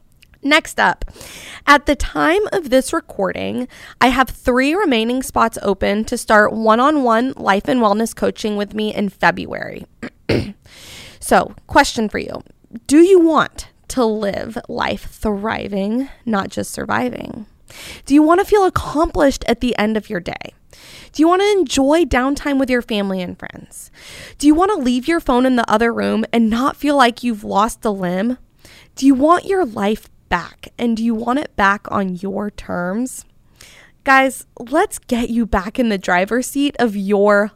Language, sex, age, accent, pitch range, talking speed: English, female, 20-39, American, 210-280 Hz, 170 wpm